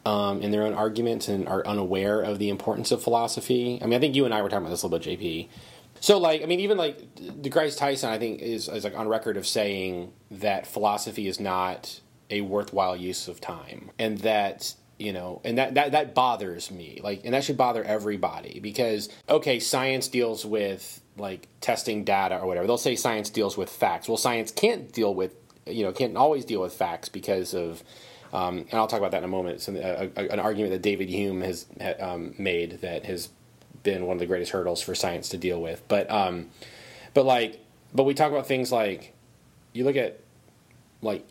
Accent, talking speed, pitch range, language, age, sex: American, 215 wpm, 95-120 Hz, English, 30-49, male